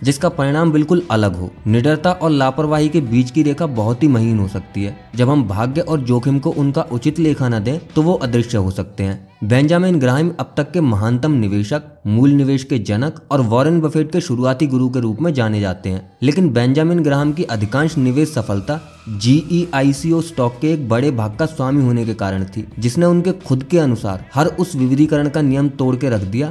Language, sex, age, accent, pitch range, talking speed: English, male, 20-39, Indian, 115-155 Hz, 130 wpm